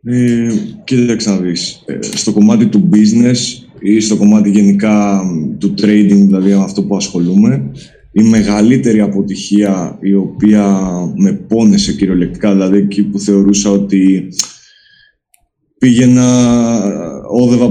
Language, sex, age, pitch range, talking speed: Greek, male, 20-39, 100-115 Hz, 110 wpm